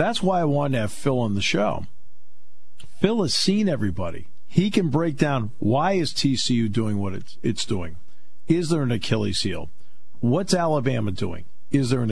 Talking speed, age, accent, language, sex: 180 wpm, 50-69, American, English, male